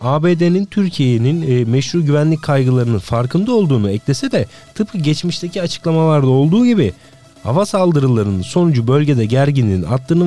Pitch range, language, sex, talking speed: 115-155 Hz, Turkish, male, 125 wpm